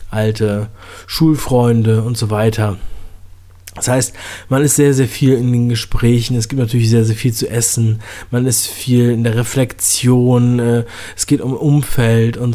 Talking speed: 165 wpm